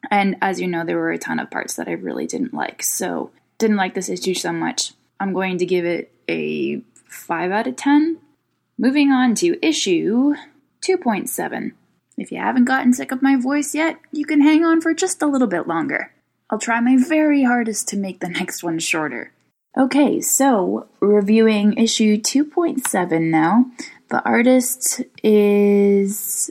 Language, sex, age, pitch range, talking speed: English, female, 10-29, 185-260 Hz, 170 wpm